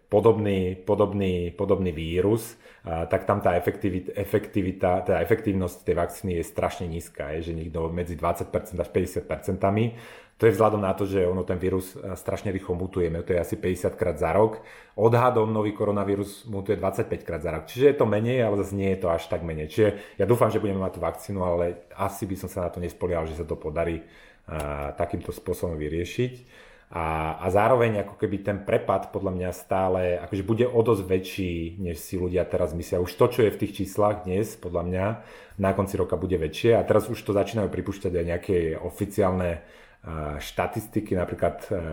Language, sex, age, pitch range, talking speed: Slovak, male, 30-49, 85-100 Hz, 190 wpm